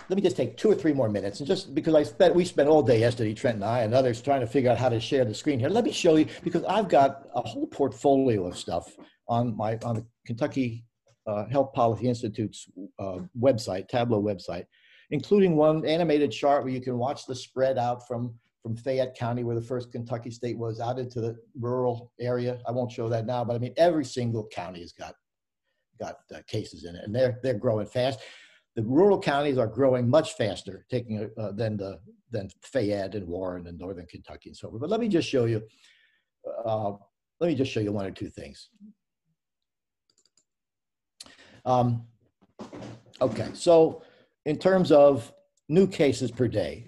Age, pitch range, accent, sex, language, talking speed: 60-79, 110-145 Hz, American, male, English, 200 wpm